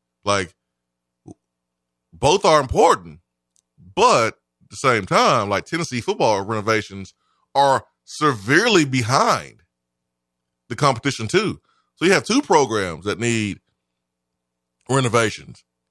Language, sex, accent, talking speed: English, male, American, 100 wpm